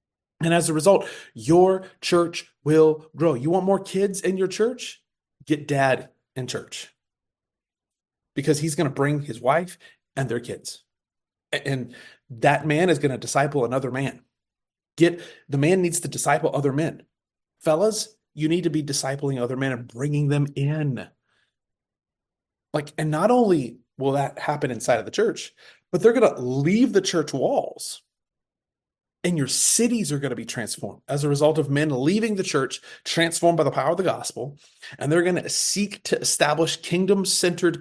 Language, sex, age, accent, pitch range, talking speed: English, male, 30-49, American, 135-180 Hz, 170 wpm